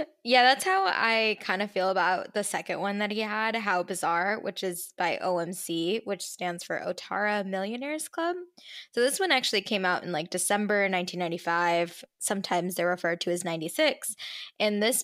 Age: 10-29